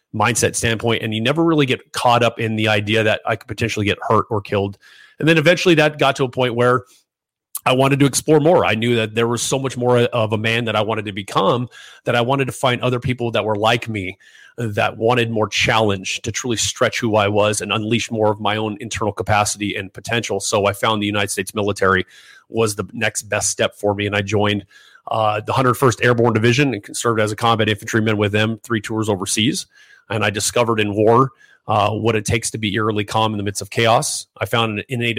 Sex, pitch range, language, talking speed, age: male, 105-120 Hz, English, 230 wpm, 30-49